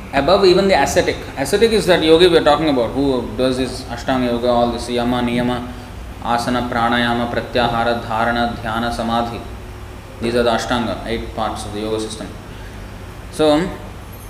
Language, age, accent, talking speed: English, 20-39, Indian, 160 wpm